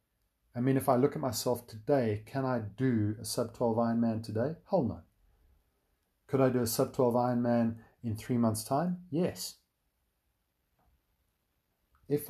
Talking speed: 140 wpm